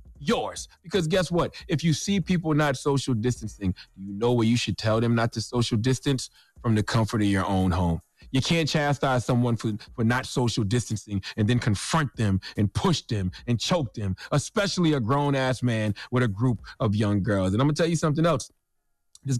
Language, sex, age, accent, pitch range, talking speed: English, male, 30-49, American, 115-155 Hz, 205 wpm